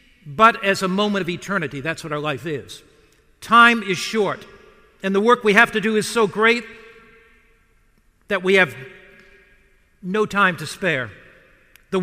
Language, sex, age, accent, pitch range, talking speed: English, male, 60-79, American, 185-225 Hz, 160 wpm